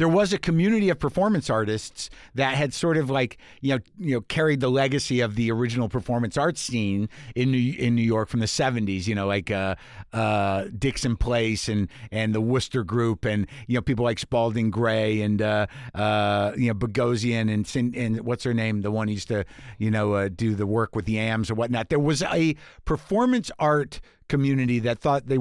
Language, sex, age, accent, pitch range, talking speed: English, male, 50-69, American, 110-150 Hz, 210 wpm